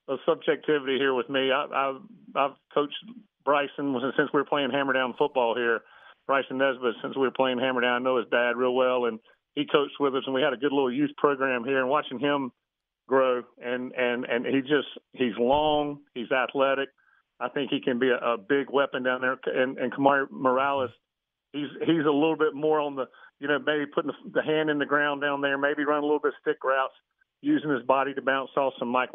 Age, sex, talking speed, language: 40-59, male, 220 wpm, English